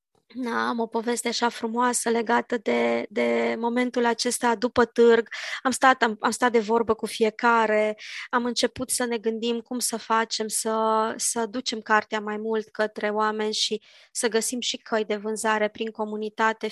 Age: 20-39